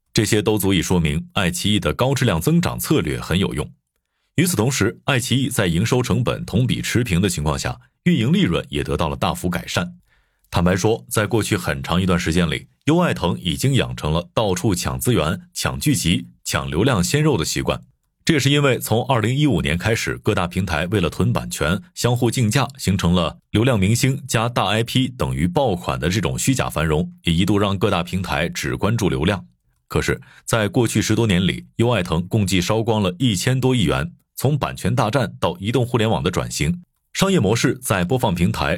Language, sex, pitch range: Chinese, male, 90-130 Hz